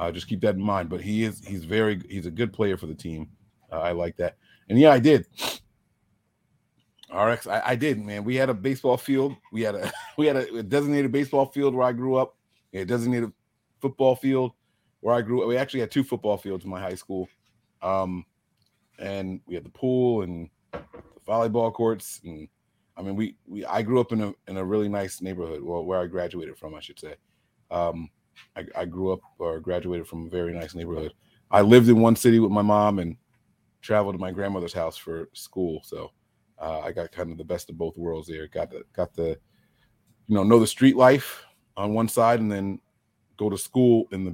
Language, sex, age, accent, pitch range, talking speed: English, male, 30-49, American, 90-120 Hz, 215 wpm